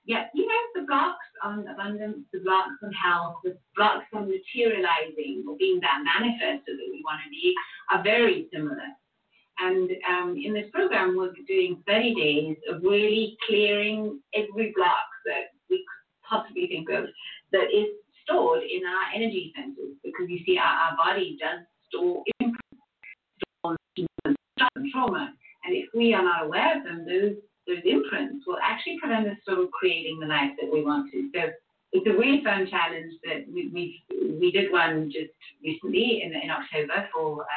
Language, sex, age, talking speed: English, female, 30-49, 160 wpm